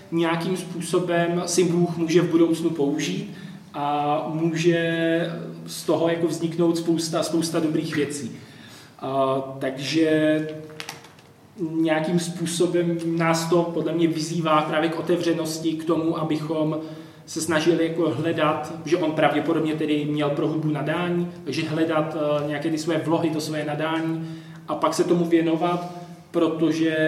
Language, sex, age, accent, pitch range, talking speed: Czech, male, 20-39, native, 150-165 Hz, 135 wpm